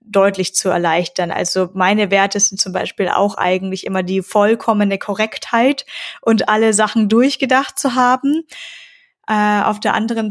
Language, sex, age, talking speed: German, female, 20-39, 145 wpm